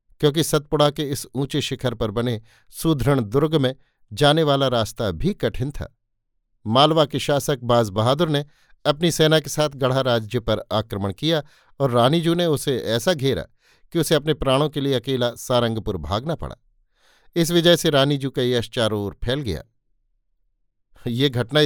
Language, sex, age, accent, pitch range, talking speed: Hindi, male, 50-69, native, 115-155 Hz, 165 wpm